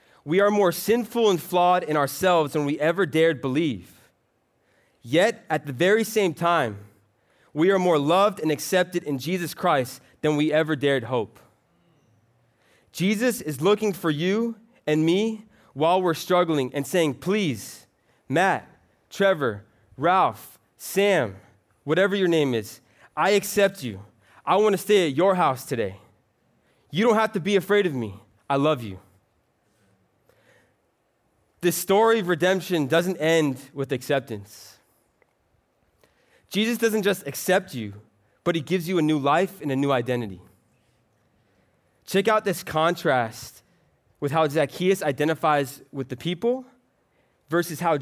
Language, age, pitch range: English, 20-39, 120-185 Hz